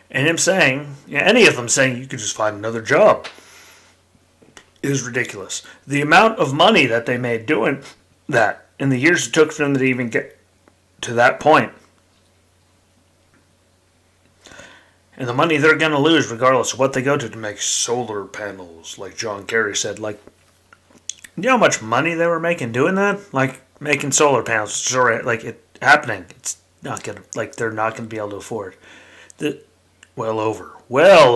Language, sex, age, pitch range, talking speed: English, male, 30-49, 95-140 Hz, 180 wpm